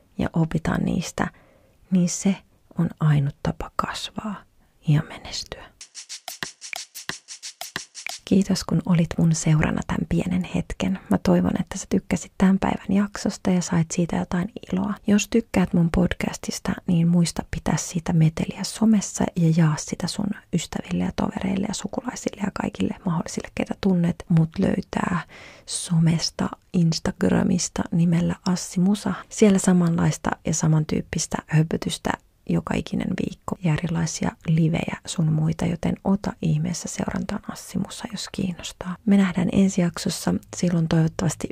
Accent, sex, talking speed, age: native, female, 125 wpm, 30-49